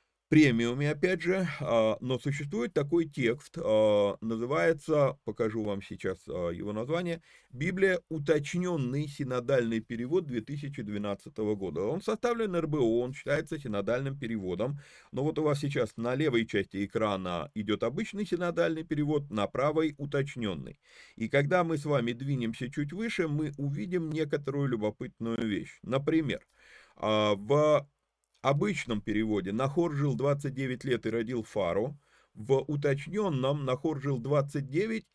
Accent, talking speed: native, 125 wpm